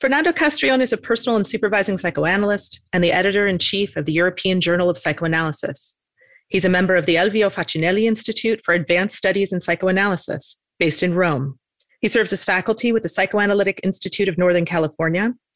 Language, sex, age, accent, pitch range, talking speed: English, female, 30-49, American, 175-210 Hz, 170 wpm